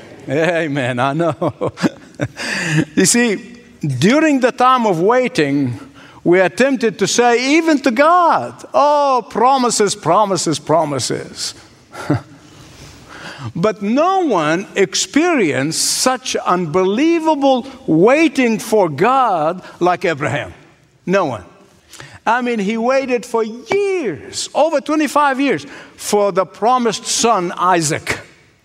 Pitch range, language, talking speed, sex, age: 180-250 Hz, English, 100 wpm, male, 60-79